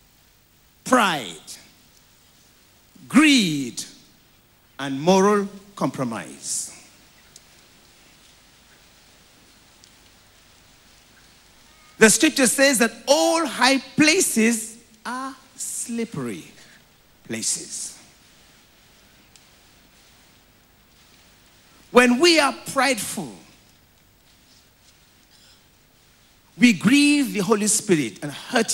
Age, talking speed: 50-69, 55 wpm